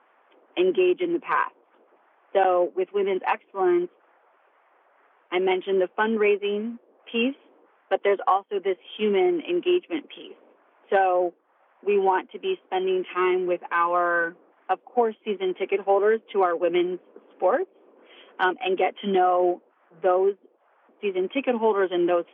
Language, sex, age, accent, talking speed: English, female, 30-49, American, 130 wpm